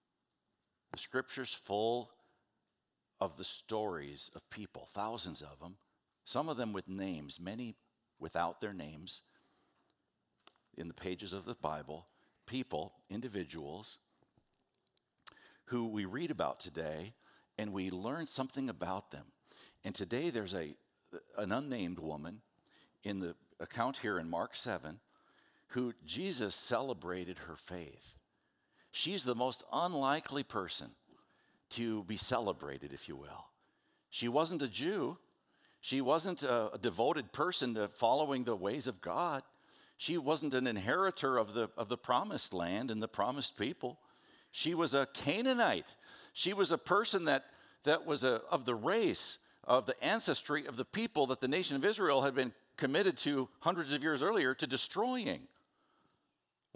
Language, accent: English, American